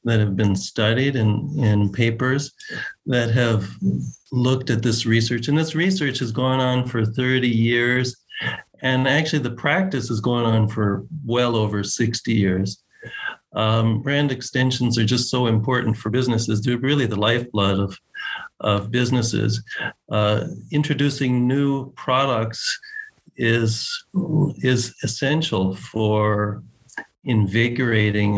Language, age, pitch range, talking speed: English, 50-69, 110-145 Hz, 125 wpm